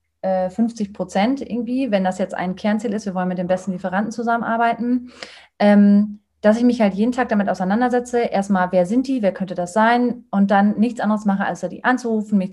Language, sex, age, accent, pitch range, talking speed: German, female, 30-49, German, 185-225 Hz, 195 wpm